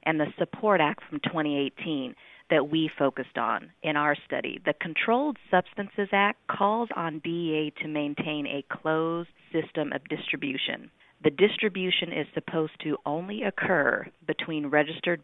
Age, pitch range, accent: 40-59, 145-175 Hz, American